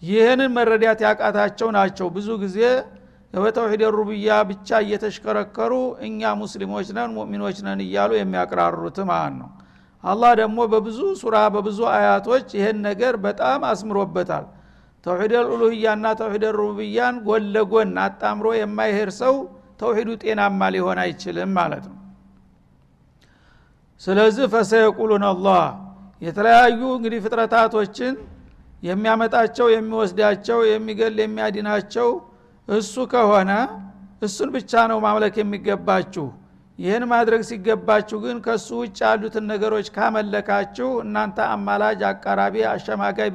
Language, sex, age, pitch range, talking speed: Amharic, male, 60-79, 200-230 Hz, 100 wpm